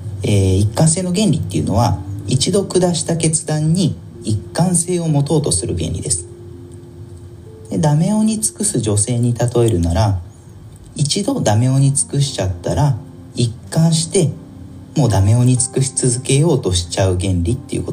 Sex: male